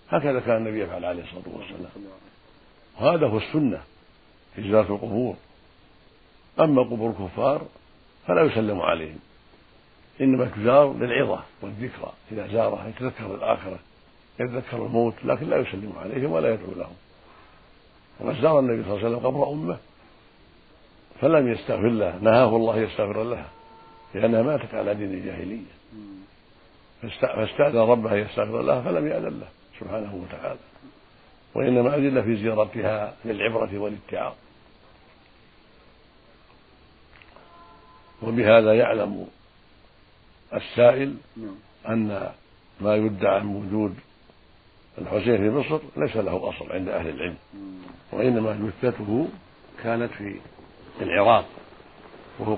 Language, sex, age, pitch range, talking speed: Arabic, male, 60-79, 100-120 Hz, 110 wpm